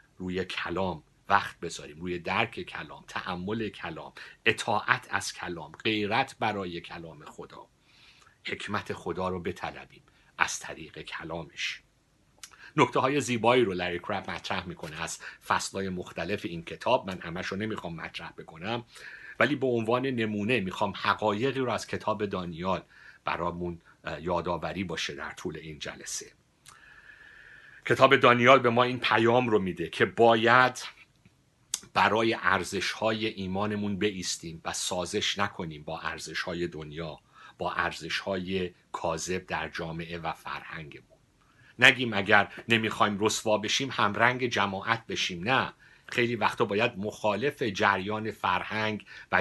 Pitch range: 90-115 Hz